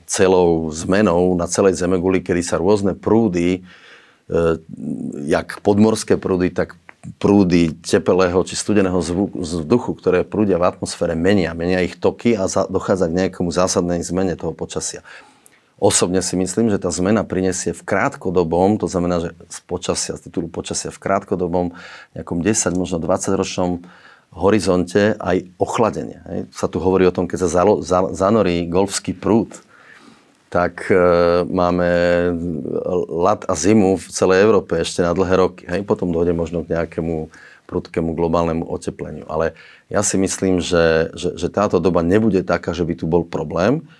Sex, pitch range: male, 85-95 Hz